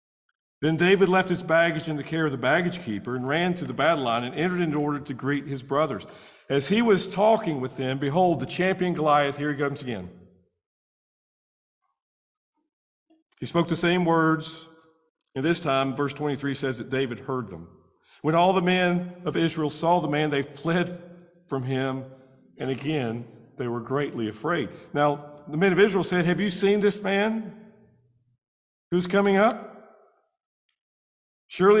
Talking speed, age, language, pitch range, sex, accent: 170 wpm, 50-69, English, 135-180 Hz, male, American